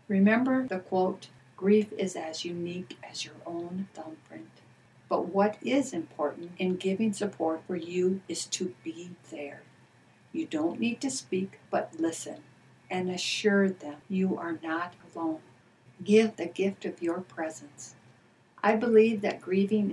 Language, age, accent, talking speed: English, 60-79, American, 145 wpm